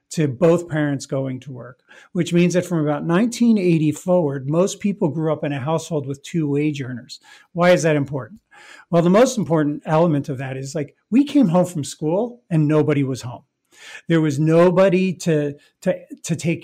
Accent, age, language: American, 40-59, English